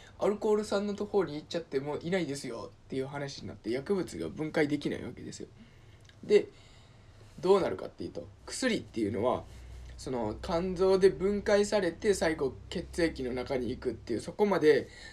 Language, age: Japanese, 20-39